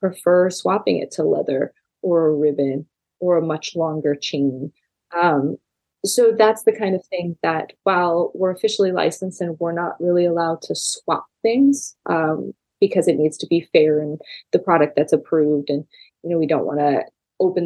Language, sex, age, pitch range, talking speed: English, female, 20-39, 150-185 Hz, 180 wpm